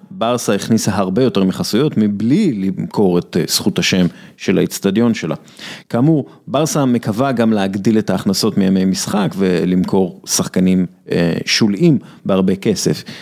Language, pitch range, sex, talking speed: Hebrew, 100-155 Hz, male, 125 wpm